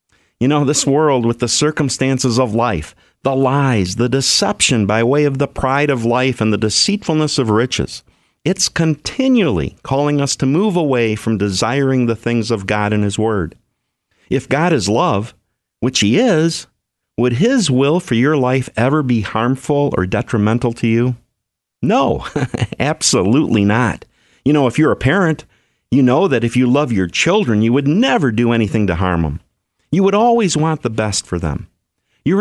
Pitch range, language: 110-150 Hz, English